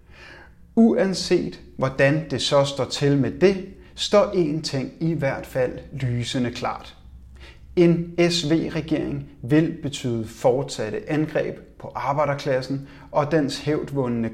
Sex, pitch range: male, 120-160 Hz